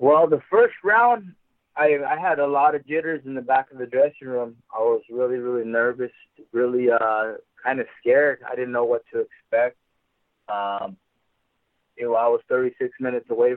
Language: English